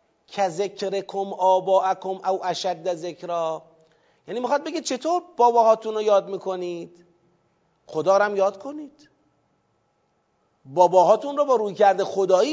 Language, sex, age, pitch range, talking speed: Persian, male, 40-59, 180-275 Hz, 95 wpm